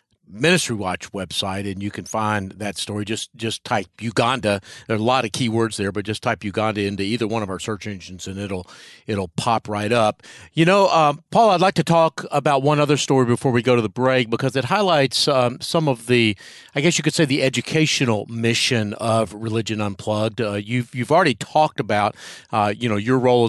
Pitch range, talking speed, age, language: 110-140 Hz, 215 wpm, 40-59, English